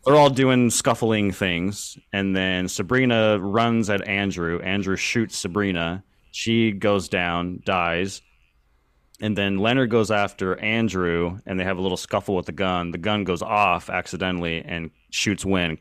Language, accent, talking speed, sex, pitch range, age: English, American, 155 wpm, male, 90-105 Hz, 30-49